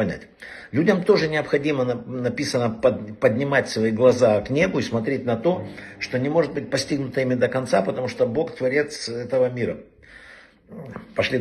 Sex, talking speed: male, 145 wpm